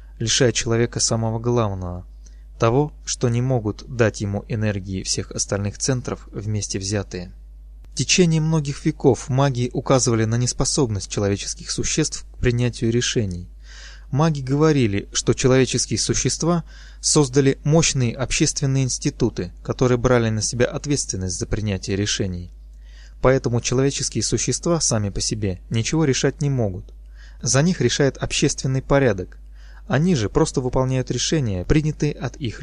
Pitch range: 100-140 Hz